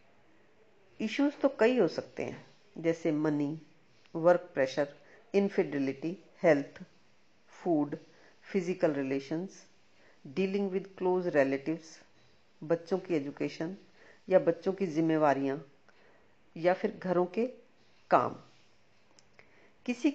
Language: Hindi